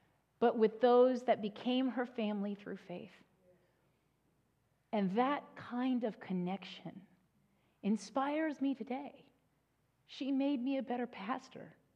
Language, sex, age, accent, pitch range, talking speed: English, female, 40-59, American, 170-235 Hz, 115 wpm